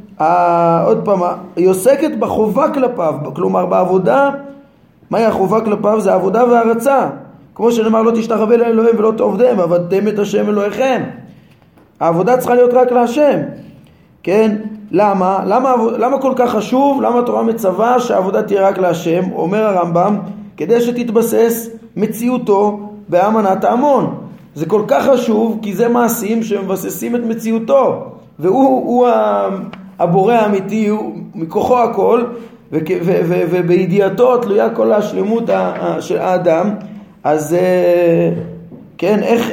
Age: 20-39